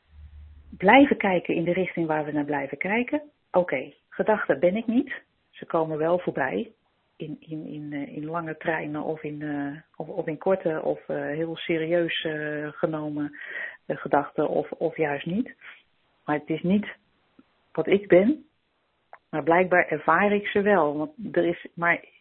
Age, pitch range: 40-59, 155-200 Hz